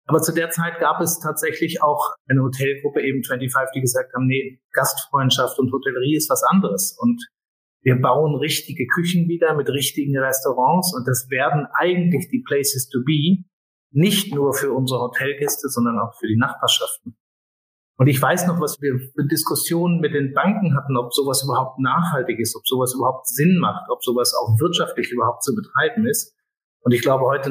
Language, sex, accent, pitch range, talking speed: German, male, German, 130-165 Hz, 180 wpm